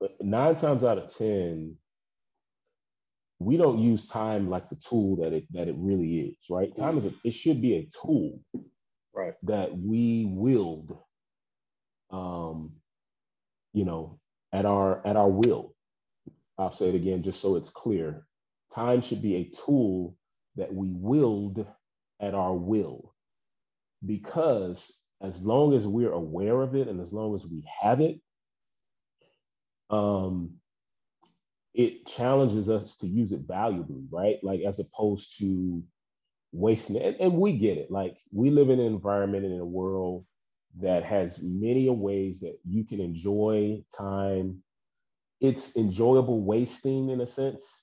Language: English